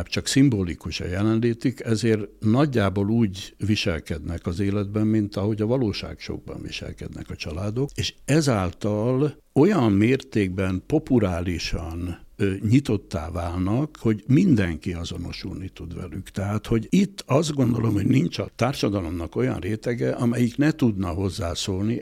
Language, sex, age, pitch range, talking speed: Hungarian, male, 60-79, 95-120 Hz, 125 wpm